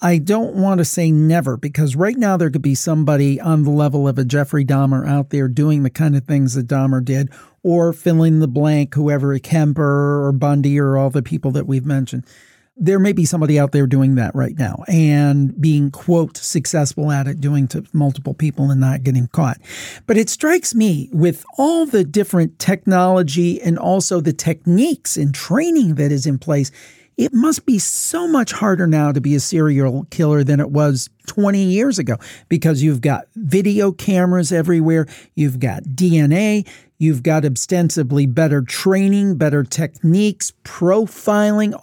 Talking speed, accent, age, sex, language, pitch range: 180 wpm, American, 40-59, male, English, 145-185 Hz